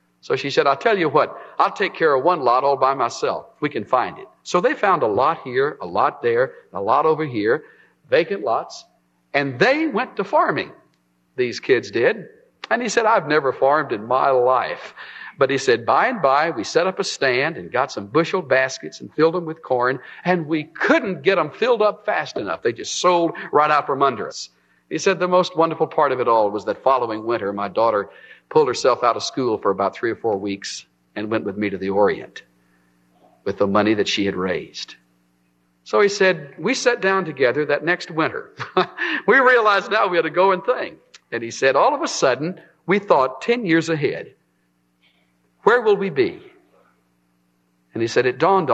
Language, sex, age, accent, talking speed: English, male, 50-69, American, 210 wpm